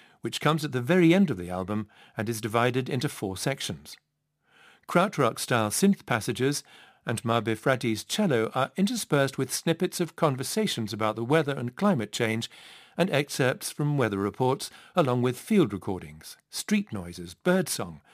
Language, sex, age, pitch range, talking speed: English, male, 50-69, 115-175 Hz, 150 wpm